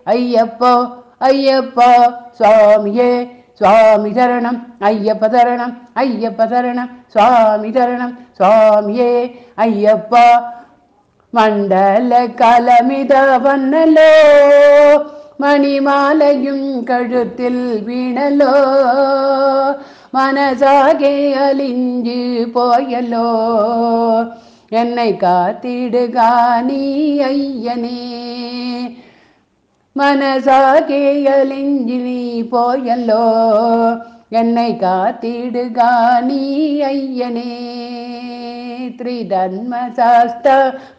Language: Tamil